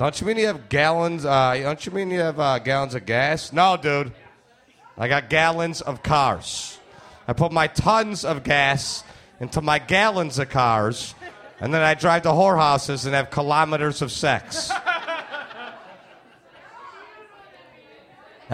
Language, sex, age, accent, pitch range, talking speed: English, male, 40-59, American, 160-255 Hz, 150 wpm